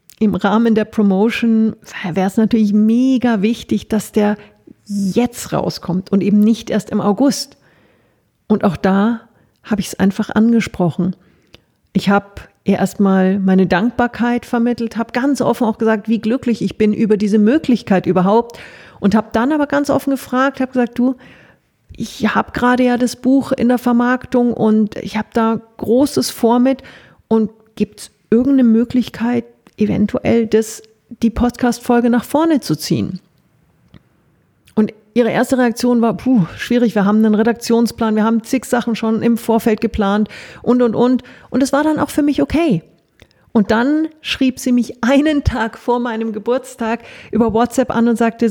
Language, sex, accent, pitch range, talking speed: German, female, German, 215-245 Hz, 160 wpm